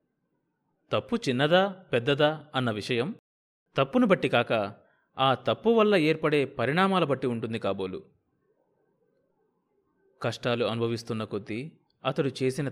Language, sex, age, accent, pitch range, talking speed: Telugu, male, 30-49, native, 115-140 Hz, 100 wpm